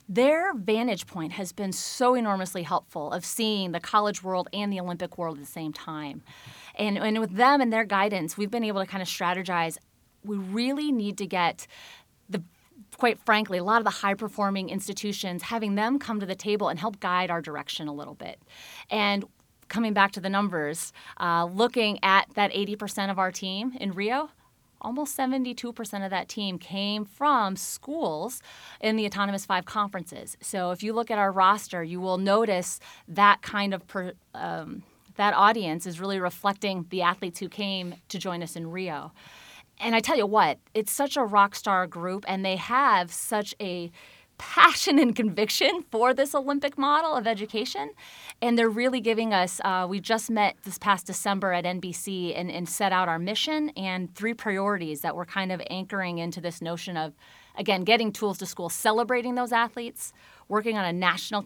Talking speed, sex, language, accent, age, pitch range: 185 wpm, female, English, American, 30-49, 180-220 Hz